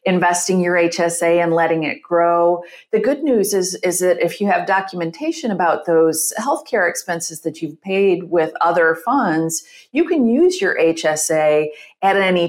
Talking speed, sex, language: 165 wpm, female, English